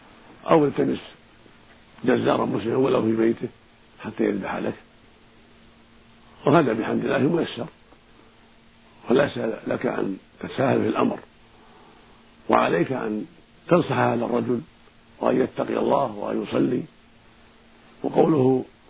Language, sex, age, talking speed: Arabic, male, 50-69, 95 wpm